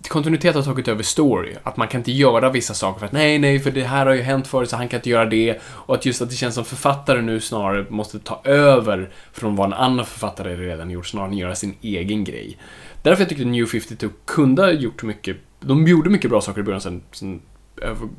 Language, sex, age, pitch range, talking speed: Swedish, male, 20-39, 110-160 Hz, 245 wpm